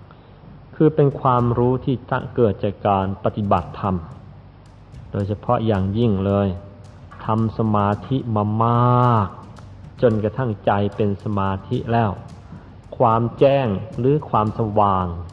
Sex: male